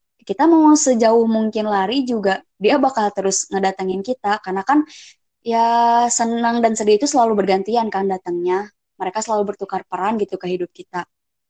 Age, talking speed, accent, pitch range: 20-39, 155 wpm, native, 195-260 Hz